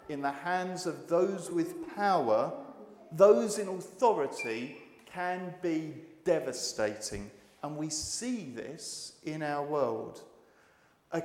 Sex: male